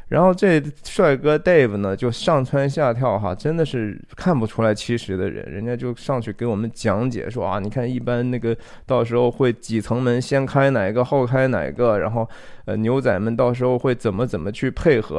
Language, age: Chinese, 20-39